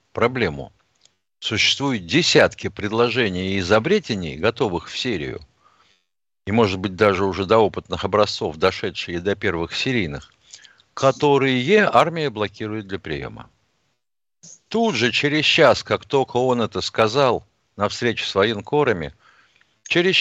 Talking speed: 115 wpm